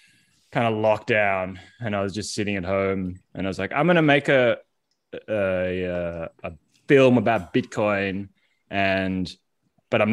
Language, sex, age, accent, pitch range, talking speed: English, male, 20-39, Australian, 90-115 Hz, 165 wpm